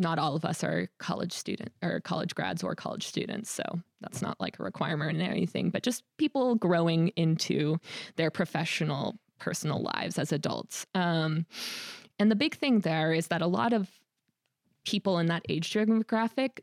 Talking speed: 175 wpm